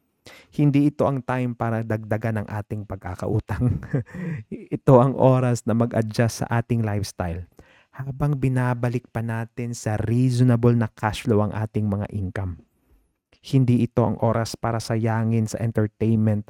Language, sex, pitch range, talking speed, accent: Filipino, male, 105-135 Hz, 140 wpm, native